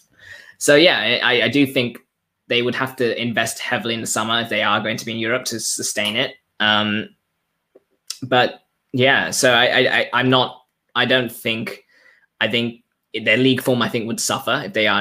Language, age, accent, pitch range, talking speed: English, 10-29, British, 105-120 Hz, 190 wpm